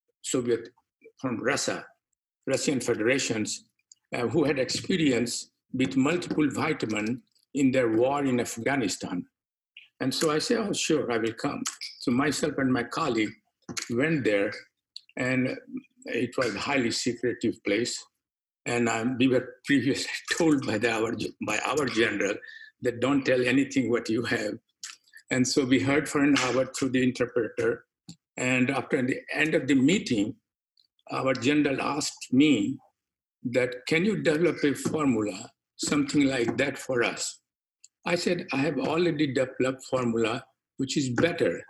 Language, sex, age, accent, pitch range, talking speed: English, male, 60-79, Indian, 125-165 Hz, 145 wpm